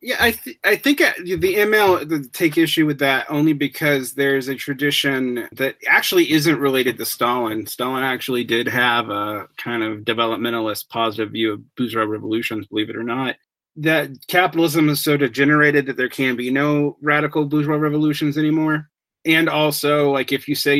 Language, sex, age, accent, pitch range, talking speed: English, male, 30-49, American, 115-145 Hz, 170 wpm